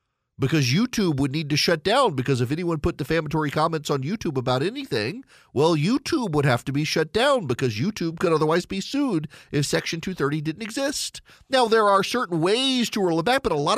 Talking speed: 210 wpm